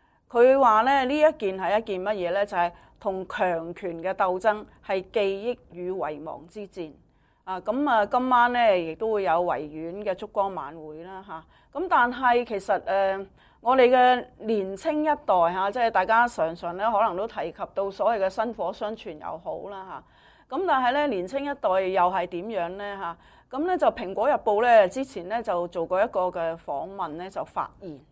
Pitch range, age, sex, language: 180-230 Hz, 30-49, female, English